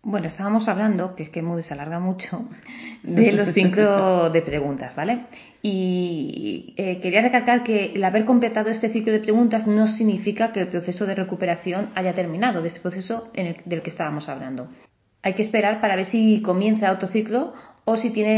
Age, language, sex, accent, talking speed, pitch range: 30-49, Spanish, female, Spanish, 185 wpm, 180-230 Hz